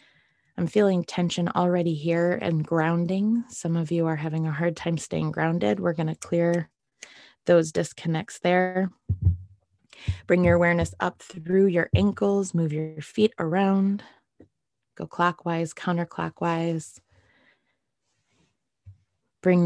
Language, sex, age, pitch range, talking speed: English, female, 20-39, 165-190 Hz, 120 wpm